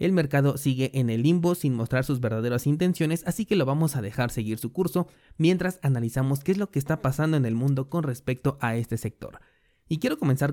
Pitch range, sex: 120-155 Hz, male